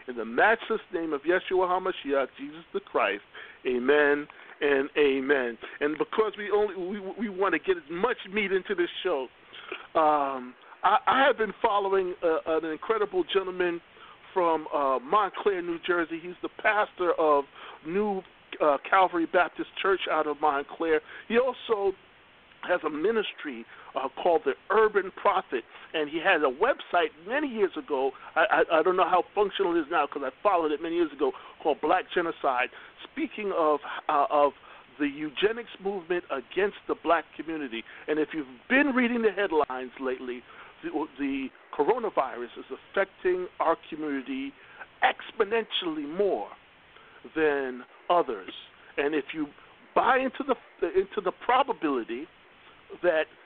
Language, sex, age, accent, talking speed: English, male, 50-69, American, 150 wpm